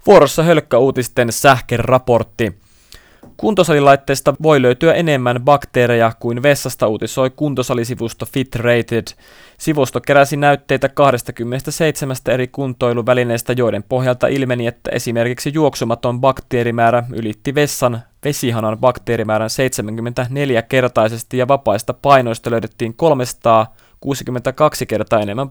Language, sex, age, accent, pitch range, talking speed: Finnish, male, 20-39, native, 115-135 Hz, 90 wpm